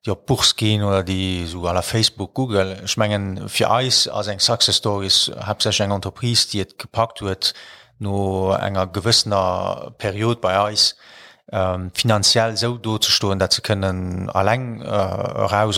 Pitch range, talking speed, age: 95-110 Hz, 160 wpm, 30-49